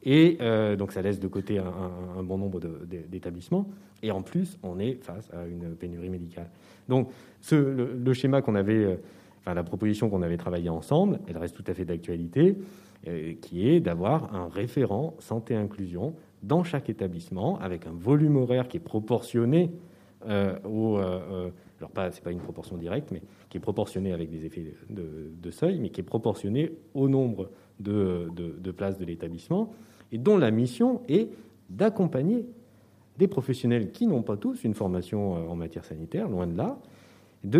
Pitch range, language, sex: 90-125 Hz, French, male